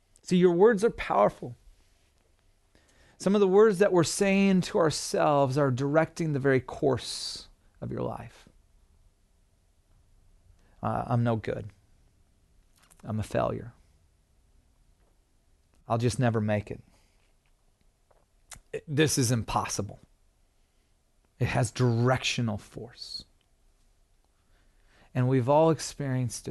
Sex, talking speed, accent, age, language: male, 105 wpm, American, 30-49, English